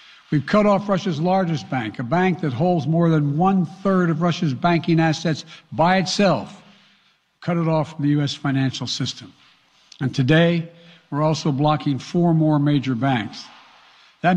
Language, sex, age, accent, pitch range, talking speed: English, male, 60-79, American, 140-175 Hz, 155 wpm